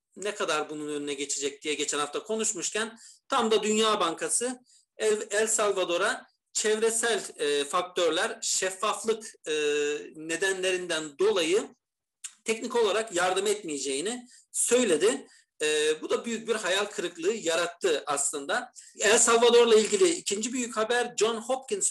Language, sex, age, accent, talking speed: Turkish, male, 40-59, native, 110 wpm